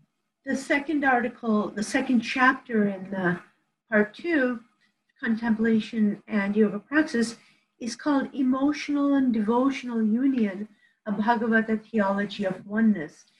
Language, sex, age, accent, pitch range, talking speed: English, female, 50-69, American, 200-240 Hz, 110 wpm